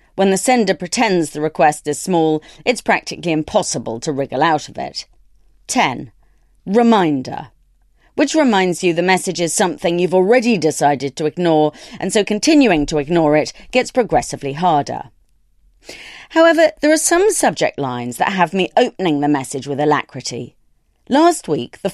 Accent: British